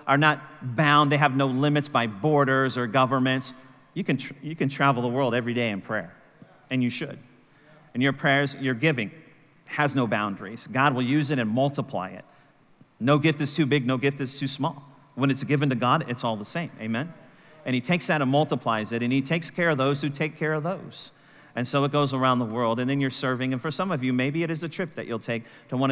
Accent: American